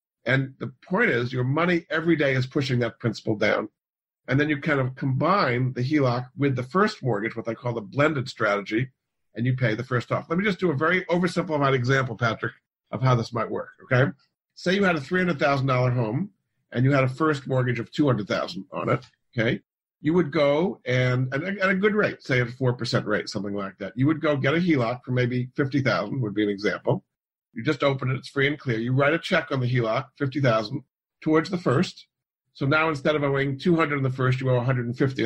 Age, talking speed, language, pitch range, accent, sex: 50-69, 230 wpm, English, 125-155 Hz, American, male